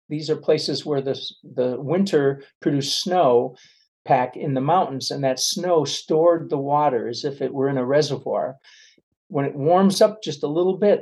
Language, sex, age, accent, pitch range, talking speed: English, male, 50-69, American, 130-160 Hz, 185 wpm